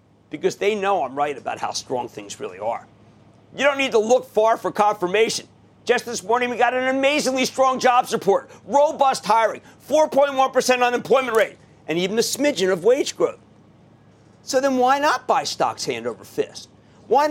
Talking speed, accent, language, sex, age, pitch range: 175 wpm, American, English, male, 50-69, 155-255 Hz